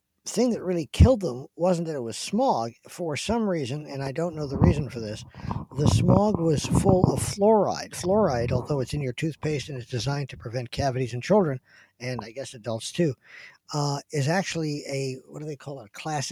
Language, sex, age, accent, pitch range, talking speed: English, male, 50-69, American, 125-155 Hz, 210 wpm